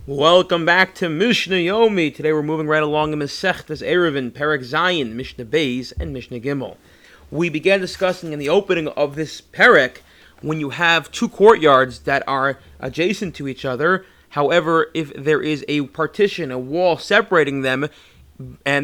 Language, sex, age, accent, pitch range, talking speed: English, male, 30-49, American, 145-180 Hz, 160 wpm